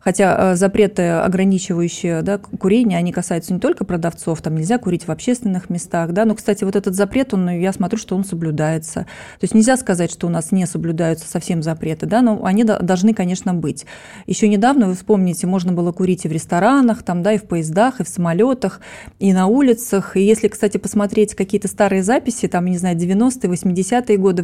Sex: female